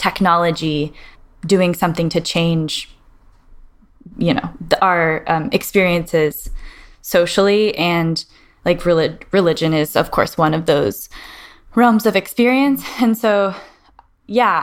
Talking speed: 115 wpm